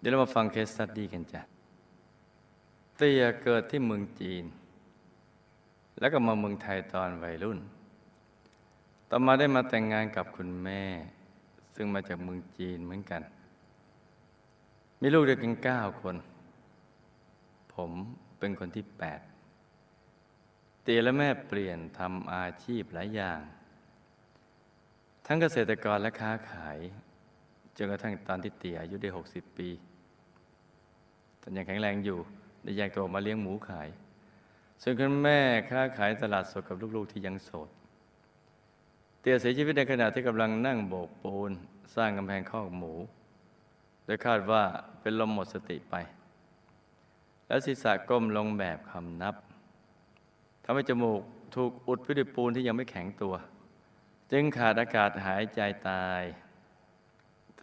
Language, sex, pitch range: Thai, male, 90-115 Hz